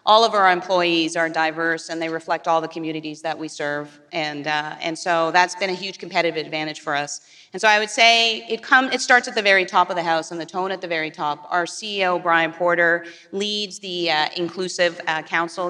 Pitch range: 165-185 Hz